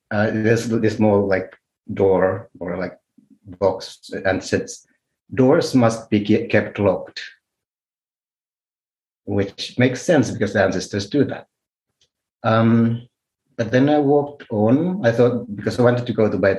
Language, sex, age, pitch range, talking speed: Finnish, male, 60-79, 100-125 Hz, 140 wpm